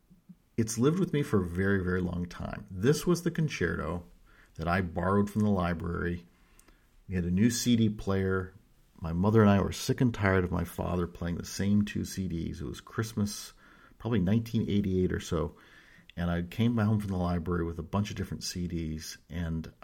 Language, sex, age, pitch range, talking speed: English, male, 50-69, 85-110 Hz, 190 wpm